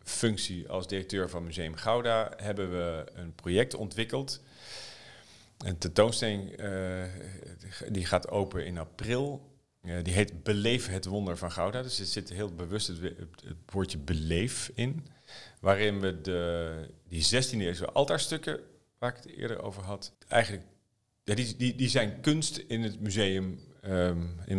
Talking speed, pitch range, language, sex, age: 135 wpm, 85-110 Hz, Dutch, male, 40-59